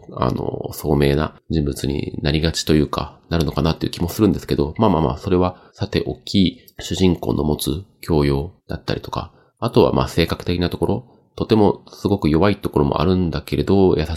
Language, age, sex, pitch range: Japanese, 30-49, male, 70-90 Hz